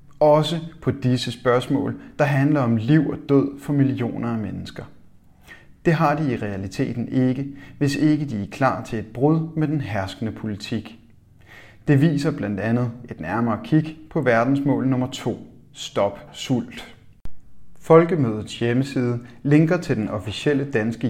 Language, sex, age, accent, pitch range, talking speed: Danish, male, 30-49, native, 115-145 Hz, 150 wpm